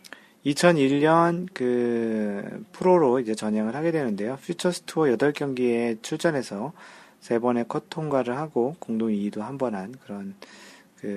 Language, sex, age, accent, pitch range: Korean, male, 40-59, native, 110-150 Hz